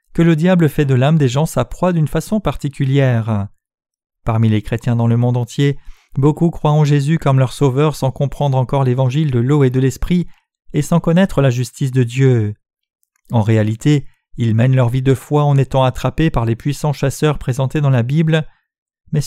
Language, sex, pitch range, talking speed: French, male, 125-160 Hz, 195 wpm